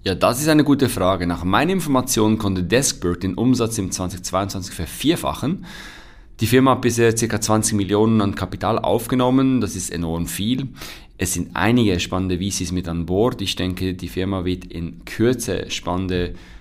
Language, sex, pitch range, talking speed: German, male, 90-115 Hz, 165 wpm